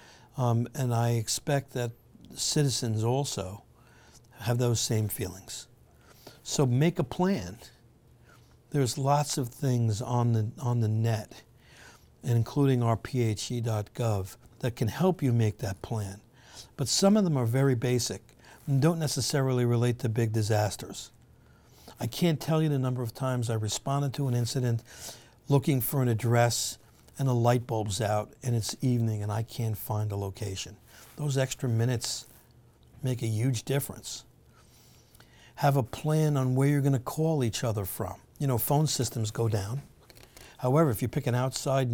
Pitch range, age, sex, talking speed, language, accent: 115-135 Hz, 60-79, male, 155 wpm, English, American